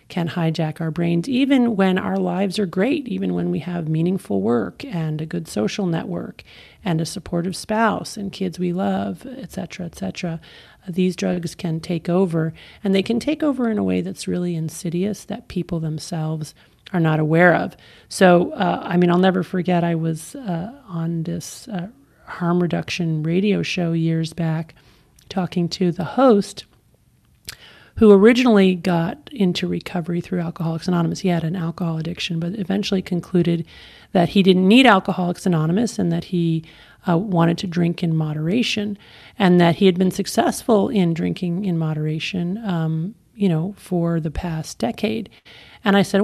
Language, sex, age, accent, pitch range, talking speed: English, male, 40-59, American, 165-195 Hz, 170 wpm